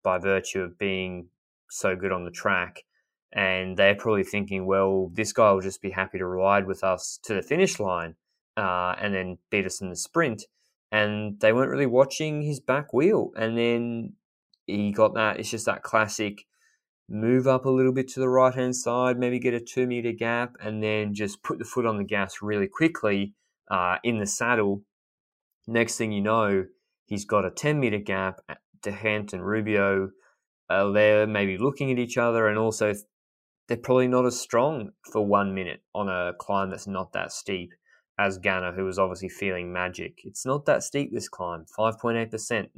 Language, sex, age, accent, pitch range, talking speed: English, male, 20-39, Australian, 95-115 Hz, 185 wpm